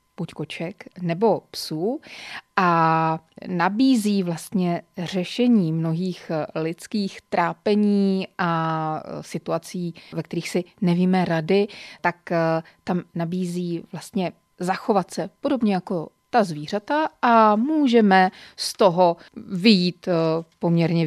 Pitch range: 165-200 Hz